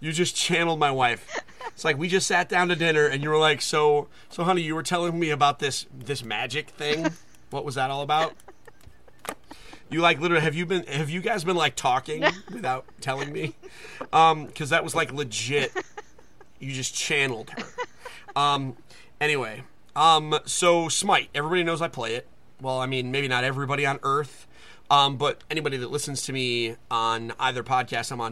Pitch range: 130-160 Hz